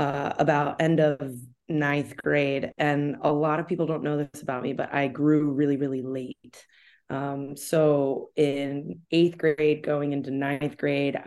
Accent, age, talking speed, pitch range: American, 20-39, 165 wpm, 145-160 Hz